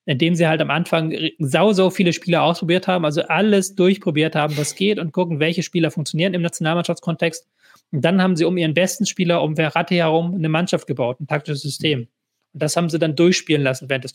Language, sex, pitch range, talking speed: German, male, 150-175 Hz, 210 wpm